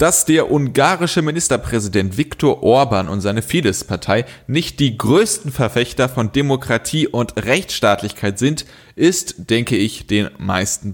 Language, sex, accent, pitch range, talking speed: German, male, German, 105-140 Hz, 125 wpm